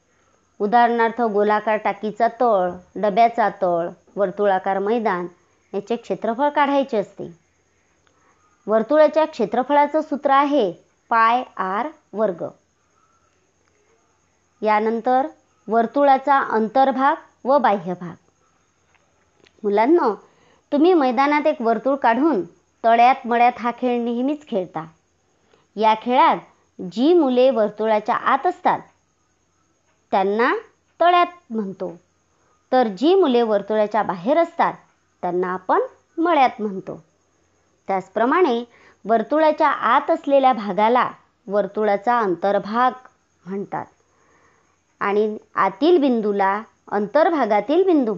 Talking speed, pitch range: 85 wpm, 200-285 Hz